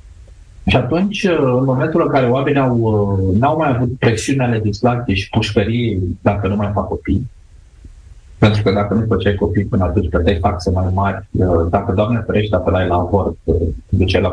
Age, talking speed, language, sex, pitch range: 30-49, 175 wpm, Romanian, male, 95-130 Hz